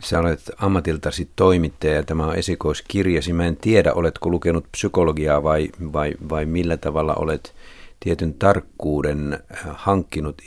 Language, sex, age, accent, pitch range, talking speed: Finnish, male, 50-69, native, 70-85 Hz, 130 wpm